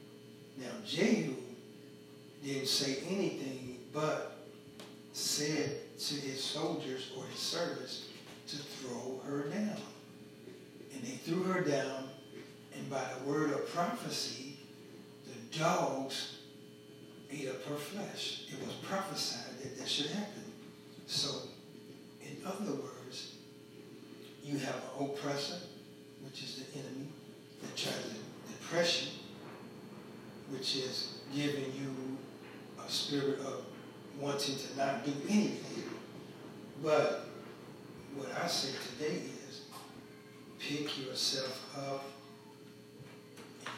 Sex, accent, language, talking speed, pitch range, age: male, American, English, 110 wpm, 130-140 Hz, 60-79